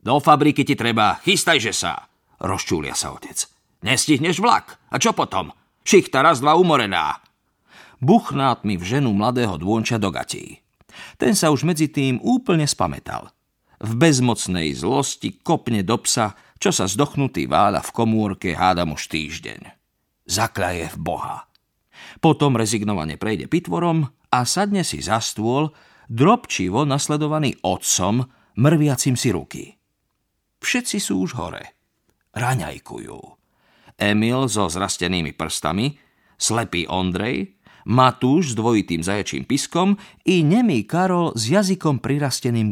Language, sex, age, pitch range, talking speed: Slovak, male, 50-69, 100-150 Hz, 125 wpm